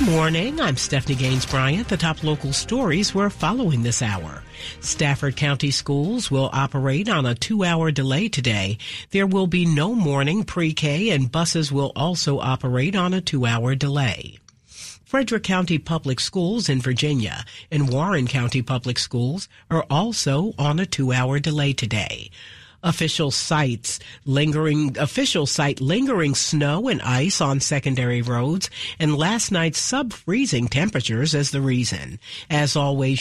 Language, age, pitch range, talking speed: English, 50-69, 130-165 Hz, 145 wpm